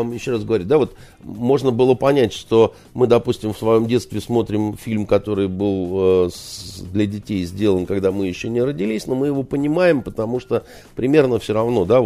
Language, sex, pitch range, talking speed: Russian, male, 100-140 Hz, 165 wpm